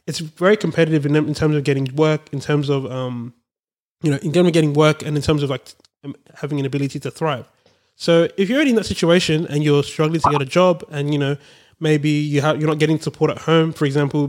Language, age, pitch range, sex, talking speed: English, 20-39, 140-165 Hz, male, 250 wpm